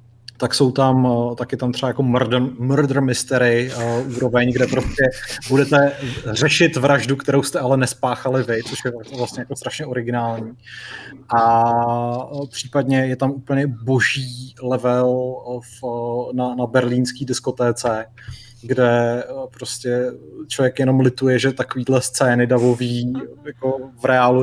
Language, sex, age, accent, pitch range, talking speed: Czech, male, 20-39, native, 120-140 Hz, 130 wpm